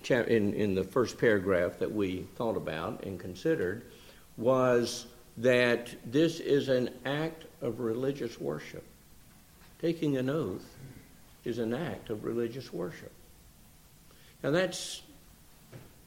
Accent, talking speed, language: American, 115 wpm, English